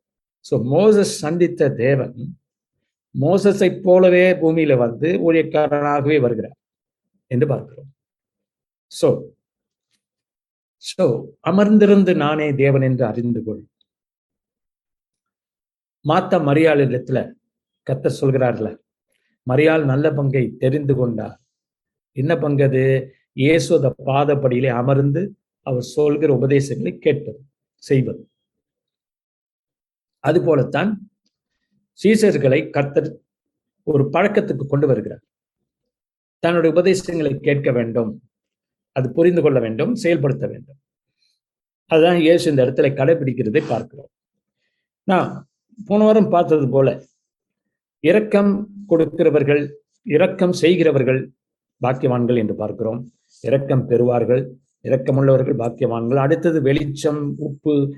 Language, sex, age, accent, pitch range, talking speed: Tamil, male, 60-79, native, 130-170 Hz, 85 wpm